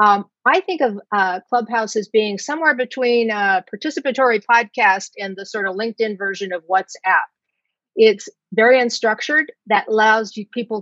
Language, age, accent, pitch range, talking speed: English, 50-69, American, 190-245 Hz, 150 wpm